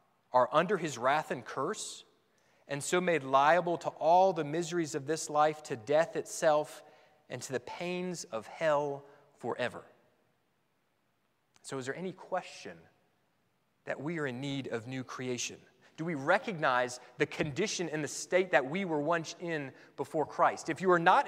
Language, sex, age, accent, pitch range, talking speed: English, male, 30-49, American, 130-165 Hz, 165 wpm